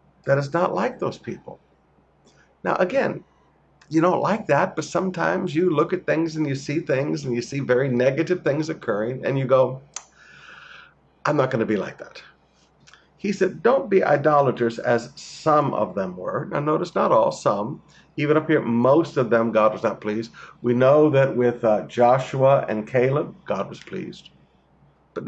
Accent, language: American, English